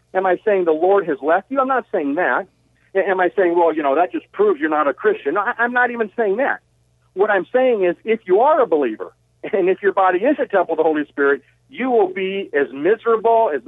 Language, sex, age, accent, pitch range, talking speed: English, male, 50-69, American, 160-255 Hz, 245 wpm